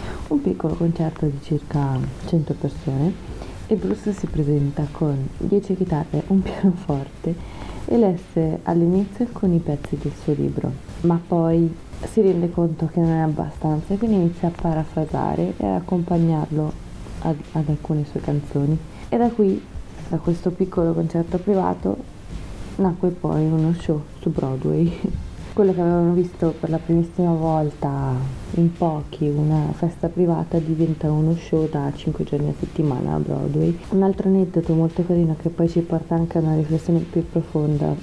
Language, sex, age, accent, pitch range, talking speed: Italian, female, 20-39, native, 155-175 Hz, 155 wpm